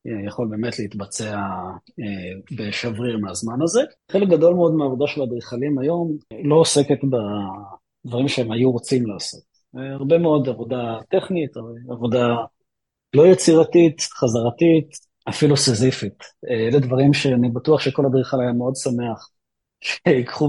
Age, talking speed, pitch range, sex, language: 30-49, 125 wpm, 115-145 Hz, male, Hebrew